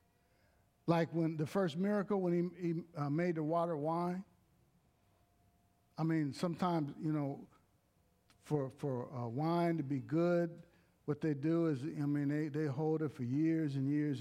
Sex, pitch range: male, 135-170 Hz